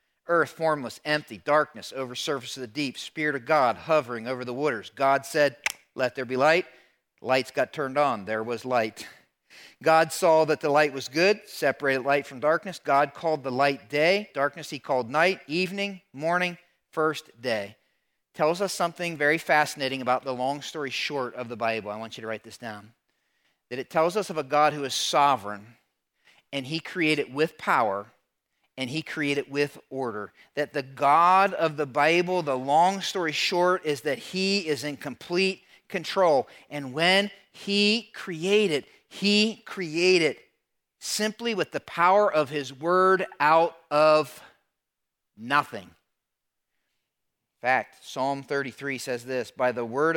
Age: 40-59